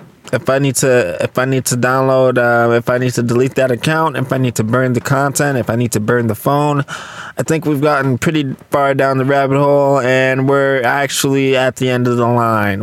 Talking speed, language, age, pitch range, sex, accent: 235 wpm, English, 20-39, 120-140 Hz, male, American